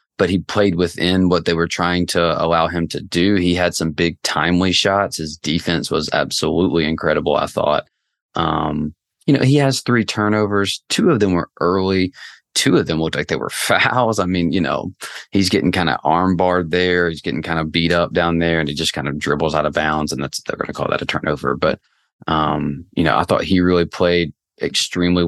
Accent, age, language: American, 30-49, English